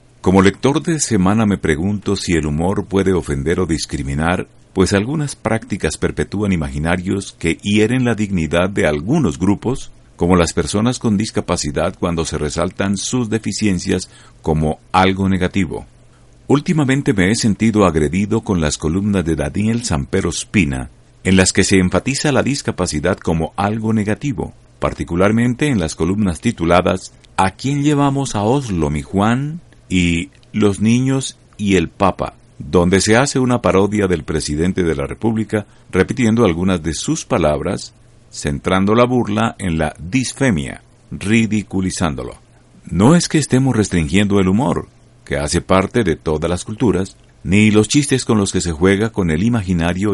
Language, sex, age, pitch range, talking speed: Spanish, male, 50-69, 85-120 Hz, 150 wpm